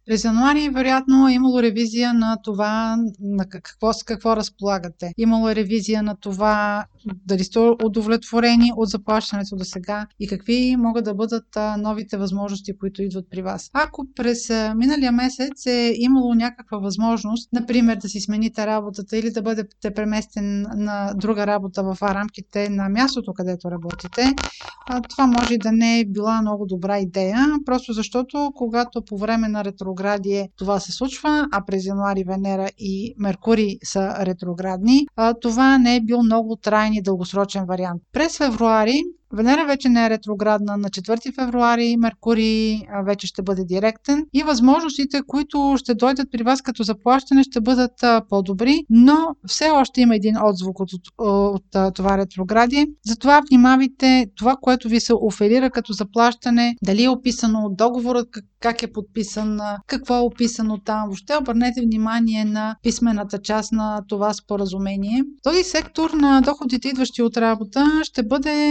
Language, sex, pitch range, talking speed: Bulgarian, female, 205-250 Hz, 150 wpm